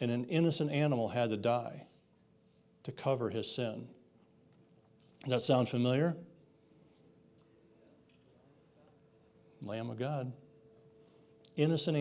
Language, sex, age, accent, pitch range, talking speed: English, male, 50-69, American, 115-150 Hz, 95 wpm